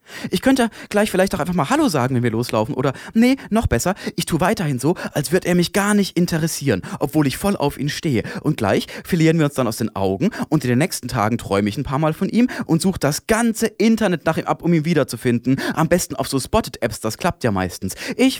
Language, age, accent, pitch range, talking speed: German, 30-49, German, 125-185 Hz, 250 wpm